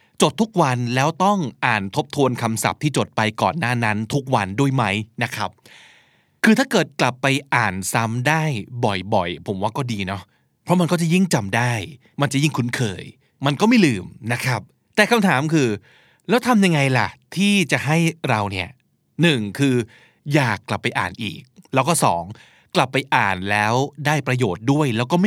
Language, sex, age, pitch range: Thai, male, 20-39, 110-160 Hz